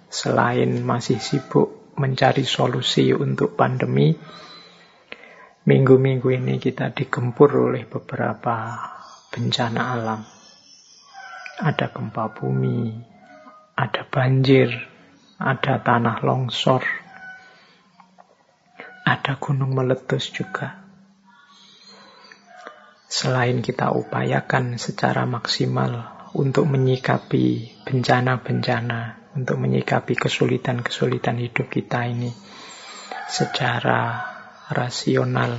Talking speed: 75 wpm